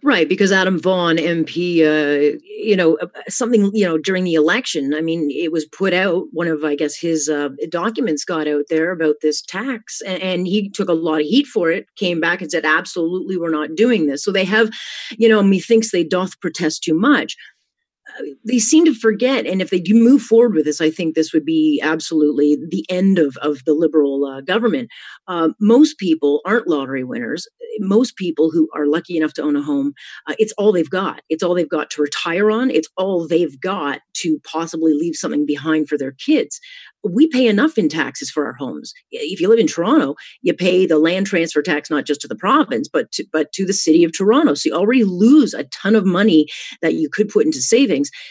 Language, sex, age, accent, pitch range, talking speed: English, female, 40-59, American, 155-215 Hz, 220 wpm